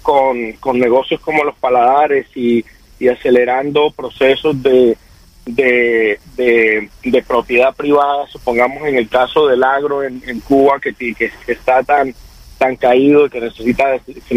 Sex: male